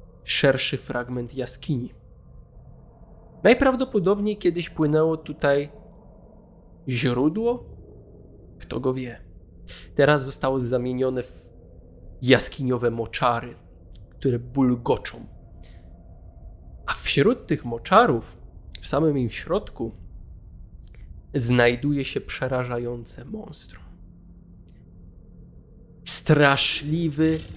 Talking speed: 70 wpm